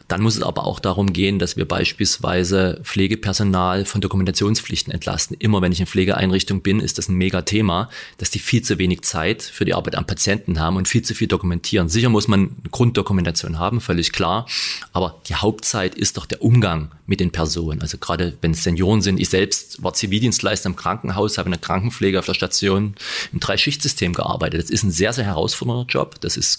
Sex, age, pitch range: male, 30-49, 90-110 Hz